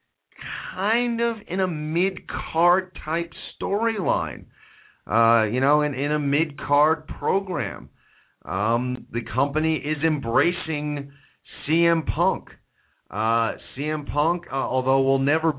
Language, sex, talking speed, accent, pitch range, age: English, male, 105 wpm, American, 115-150 Hz, 40-59